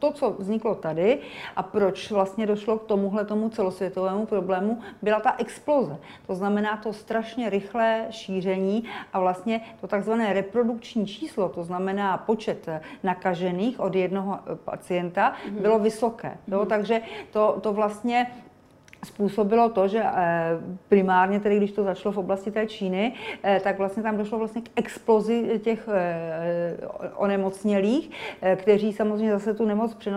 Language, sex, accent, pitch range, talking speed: Czech, female, native, 195-220 Hz, 130 wpm